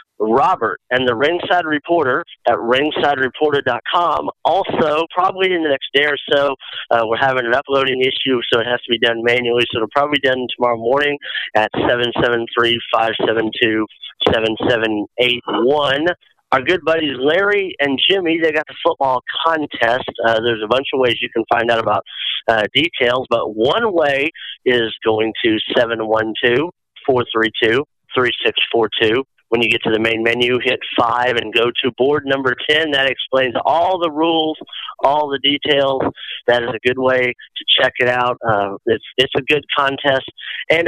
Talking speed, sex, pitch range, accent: 185 wpm, male, 120-145 Hz, American